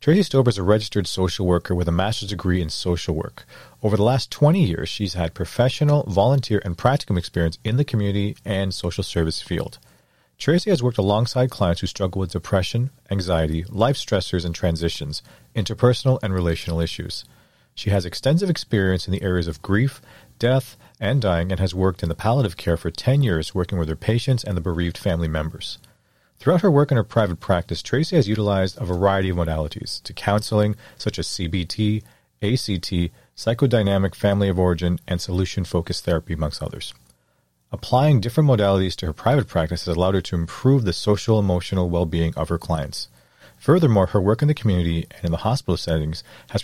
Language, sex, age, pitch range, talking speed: English, male, 40-59, 85-115 Hz, 180 wpm